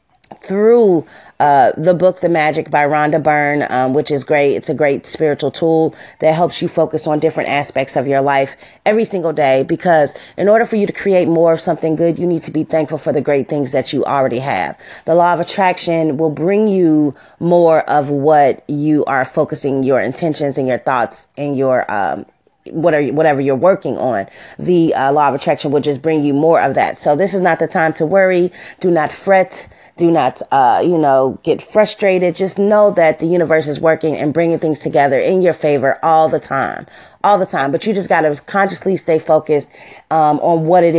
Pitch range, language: 145-175 Hz, English